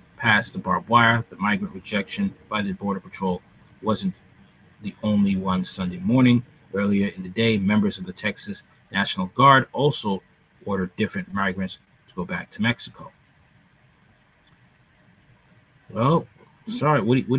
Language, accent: English, American